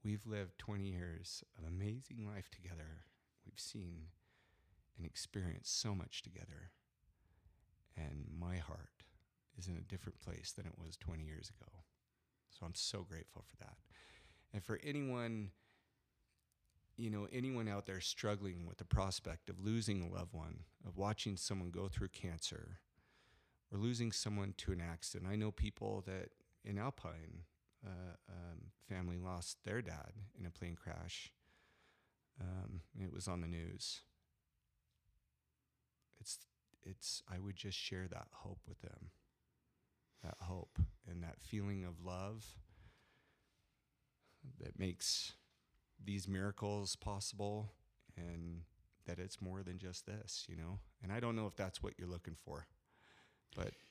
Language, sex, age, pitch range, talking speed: English, male, 40-59, 85-105 Hz, 145 wpm